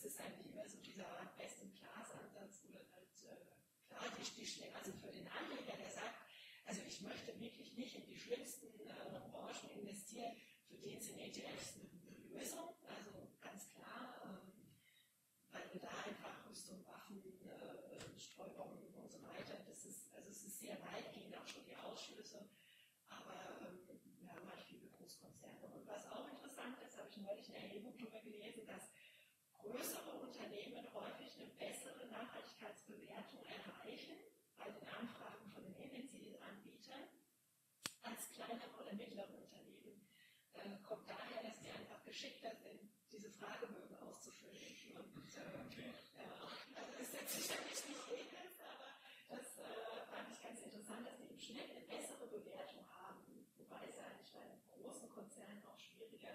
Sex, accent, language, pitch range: female, German, German, 205-250 Hz